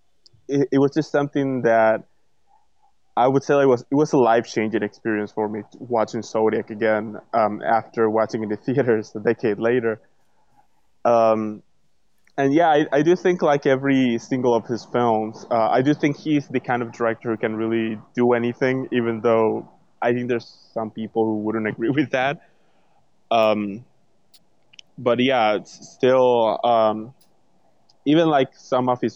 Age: 20-39